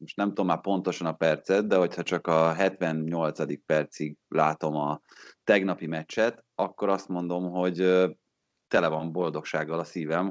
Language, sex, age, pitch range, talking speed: Hungarian, male, 30-49, 80-105 Hz, 150 wpm